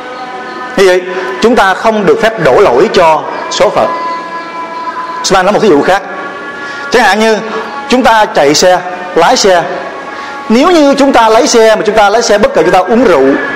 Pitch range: 200-280 Hz